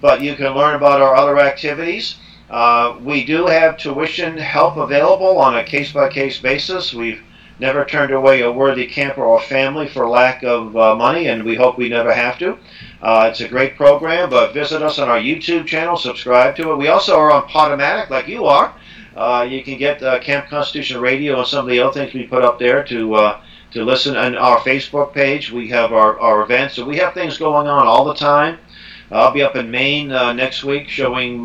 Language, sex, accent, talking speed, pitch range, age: English, male, American, 215 wpm, 120-145 Hz, 50-69